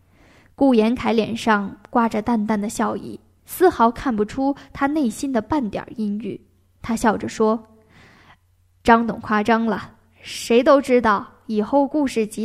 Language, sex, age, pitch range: Chinese, female, 10-29, 200-270 Hz